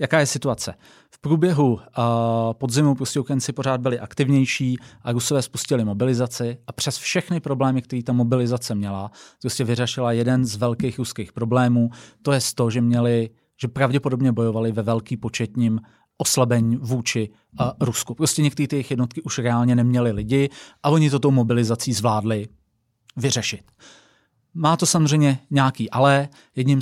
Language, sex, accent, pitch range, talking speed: Czech, male, native, 115-135 Hz, 150 wpm